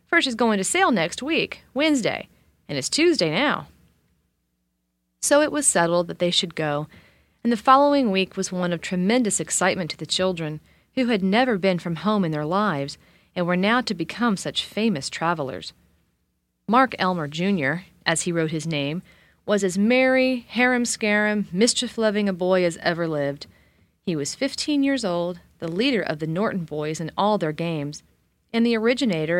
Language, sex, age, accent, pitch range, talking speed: English, female, 40-59, American, 155-225 Hz, 175 wpm